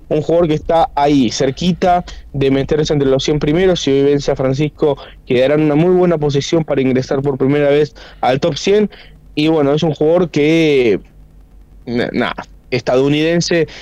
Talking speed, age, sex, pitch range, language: 170 wpm, 20-39, male, 135-175 Hz, Spanish